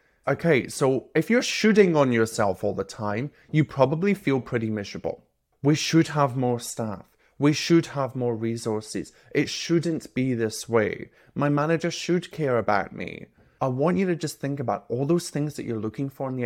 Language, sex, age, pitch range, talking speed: English, male, 30-49, 120-160 Hz, 190 wpm